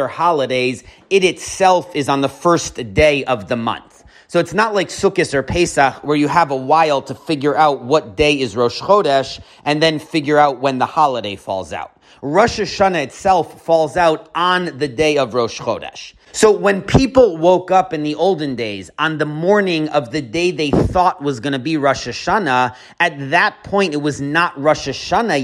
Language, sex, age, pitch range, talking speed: English, male, 30-49, 140-180 Hz, 195 wpm